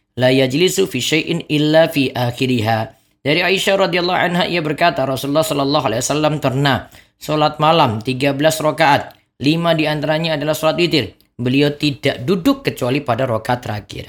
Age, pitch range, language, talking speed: 20-39, 130-180 Hz, Indonesian, 135 wpm